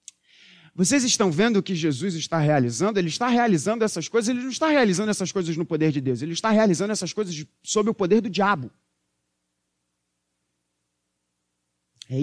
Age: 40-59